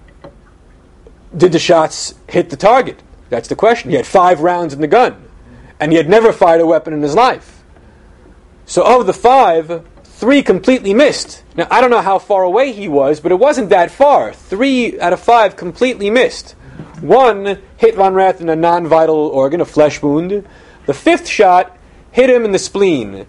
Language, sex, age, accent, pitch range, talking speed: English, male, 30-49, American, 130-190 Hz, 185 wpm